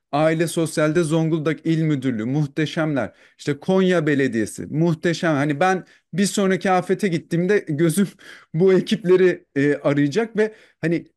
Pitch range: 160-210 Hz